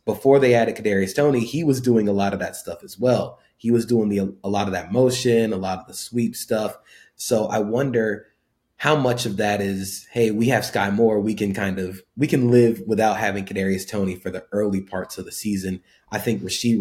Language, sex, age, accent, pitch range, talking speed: English, male, 20-39, American, 95-115 Hz, 230 wpm